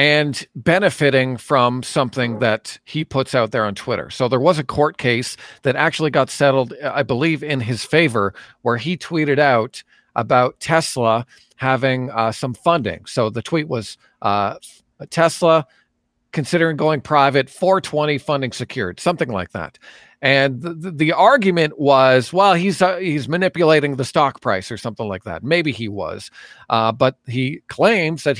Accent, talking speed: American, 160 wpm